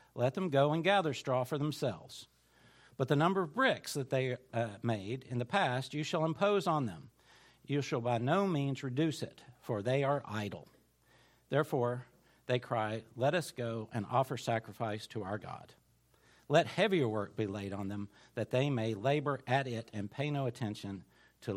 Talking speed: 185 wpm